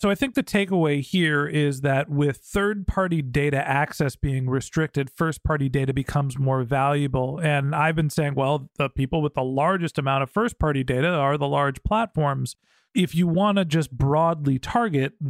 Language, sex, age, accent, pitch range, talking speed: English, male, 40-59, American, 140-180 Hz, 175 wpm